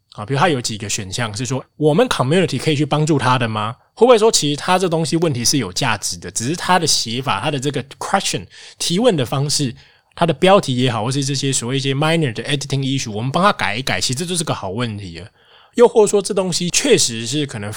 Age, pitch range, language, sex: 20-39, 115-150 Hz, Chinese, male